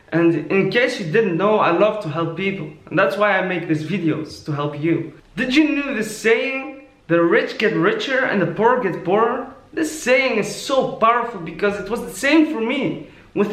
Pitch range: 195-295 Hz